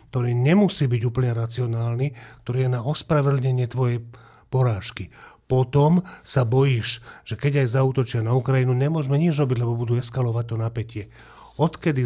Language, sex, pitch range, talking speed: Slovak, male, 115-135 Hz, 145 wpm